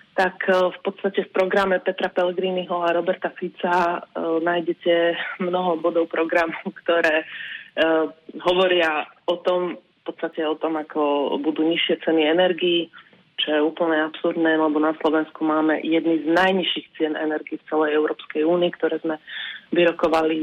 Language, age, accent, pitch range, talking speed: Czech, 30-49, native, 160-180 Hz, 140 wpm